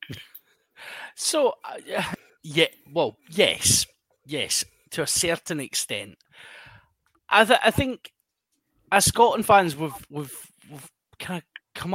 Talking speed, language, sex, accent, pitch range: 115 wpm, English, male, British, 140-200 Hz